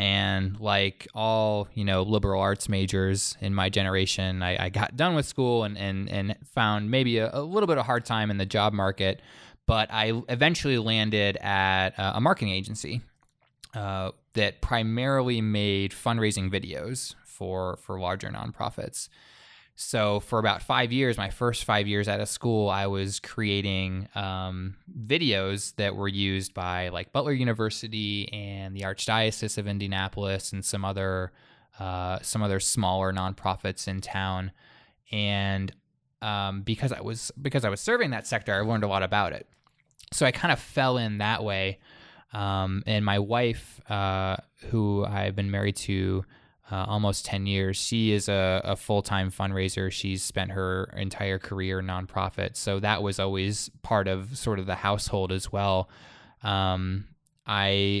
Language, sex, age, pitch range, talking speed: English, male, 20-39, 95-110 Hz, 160 wpm